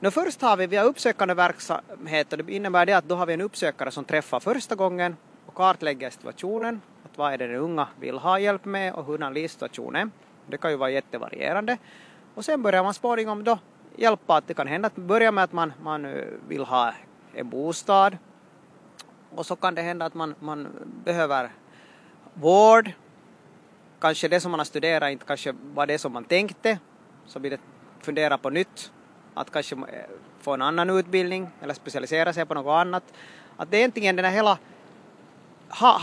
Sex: male